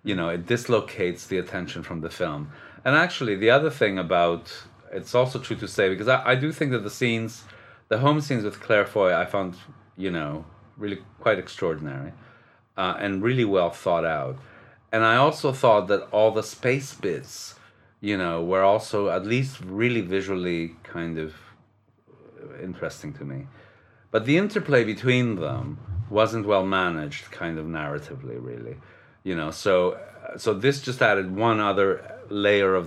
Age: 40-59